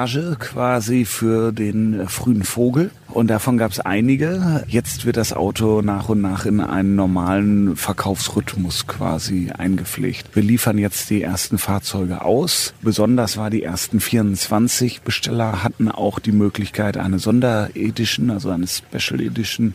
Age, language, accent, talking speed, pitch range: 40-59, German, German, 140 wpm, 95-110 Hz